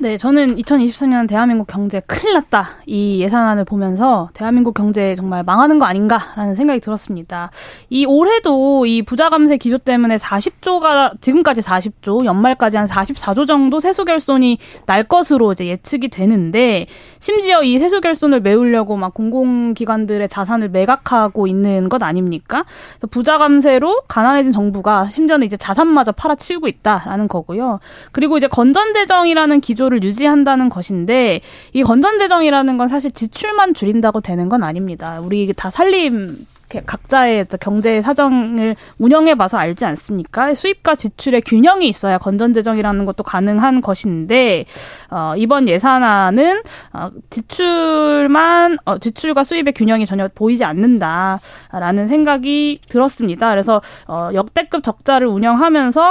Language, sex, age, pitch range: Korean, female, 20-39, 210-285 Hz